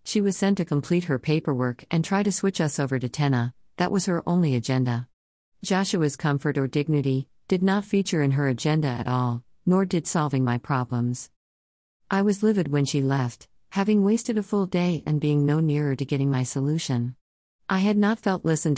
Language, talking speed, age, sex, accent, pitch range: English, 195 wpm, 50-69, female, American, 130-170 Hz